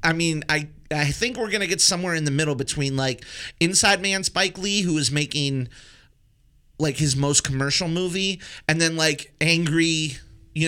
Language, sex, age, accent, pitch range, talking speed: English, male, 30-49, American, 130-165 Hz, 180 wpm